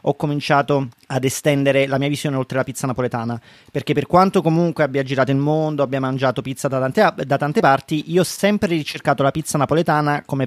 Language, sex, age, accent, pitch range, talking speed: Italian, male, 30-49, native, 130-155 Hz, 195 wpm